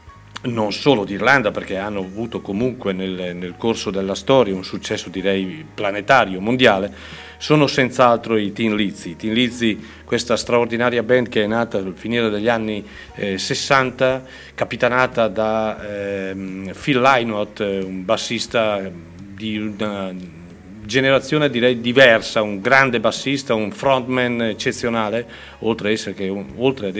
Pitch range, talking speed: 100-125 Hz, 135 wpm